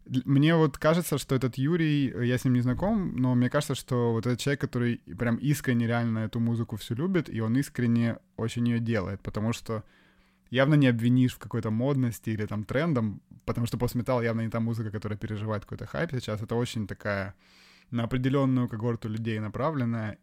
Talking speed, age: 185 wpm, 20-39